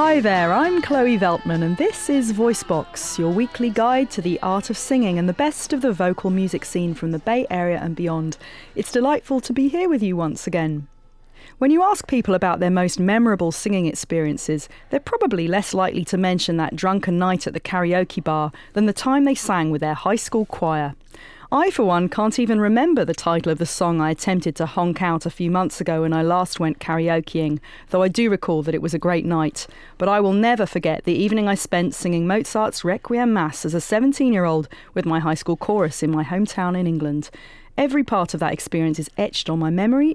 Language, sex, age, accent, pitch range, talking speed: English, female, 40-59, British, 165-220 Hz, 215 wpm